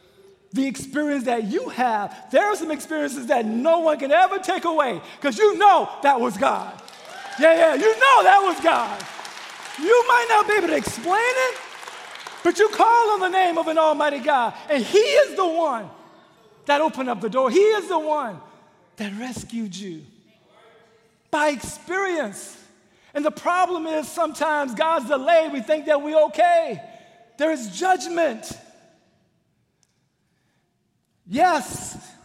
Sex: male